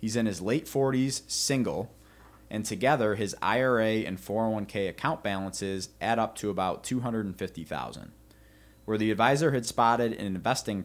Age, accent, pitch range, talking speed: 20-39, American, 90-110 Hz, 145 wpm